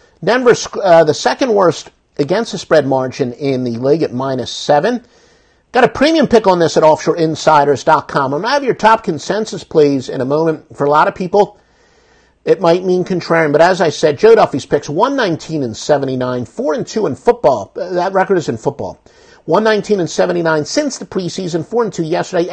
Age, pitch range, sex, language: 50-69, 150-200 Hz, male, English